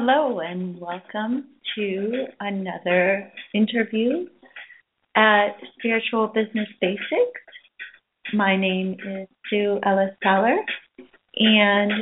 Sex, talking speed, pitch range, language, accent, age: female, 80 wpm, 200-235 Hz, English, American, 30-49